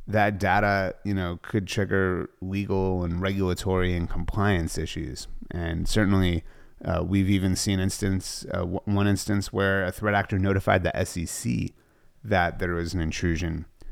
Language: English